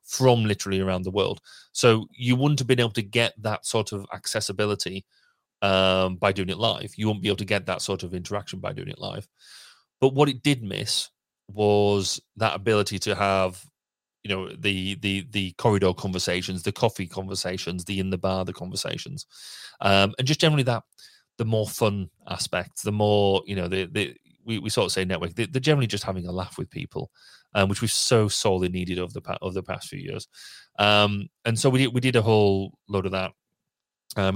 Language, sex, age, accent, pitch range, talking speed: English, male, 30-49, British, 95-110 Hz, 210 wpm